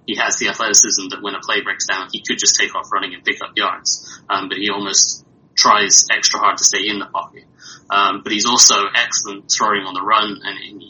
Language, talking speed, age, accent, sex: English, 240 wpm, 20-39, British, male